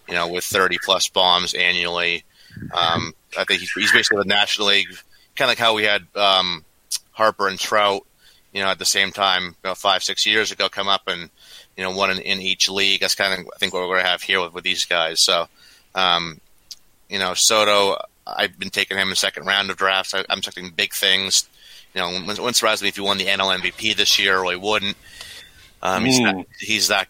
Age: 30-49